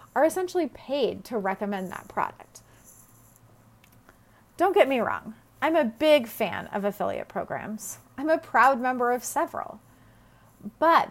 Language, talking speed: English, 135 wpm